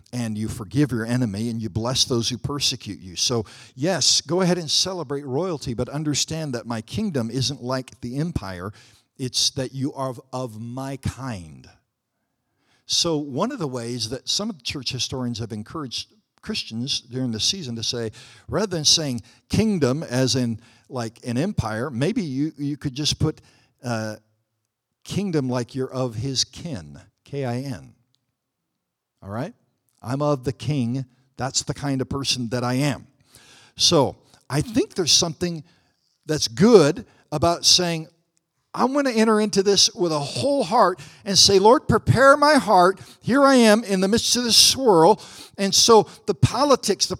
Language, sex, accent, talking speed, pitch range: English, male, American, 170 wpm, 125-200 Hz